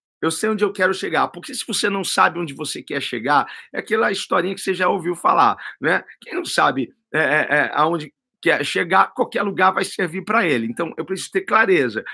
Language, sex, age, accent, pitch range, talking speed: Portuguese, male, 50-69, Brazilian, 165-230 Hz, 215 wpm